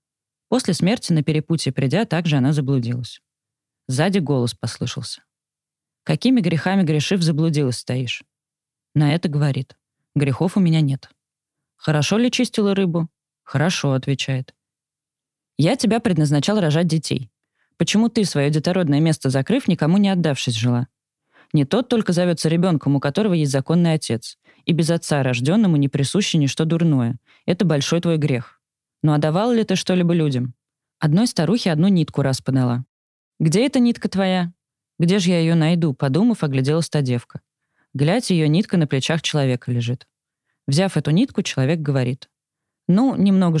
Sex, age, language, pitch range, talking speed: female, 20-39, Russian, 135-180 Hz, 145 wpm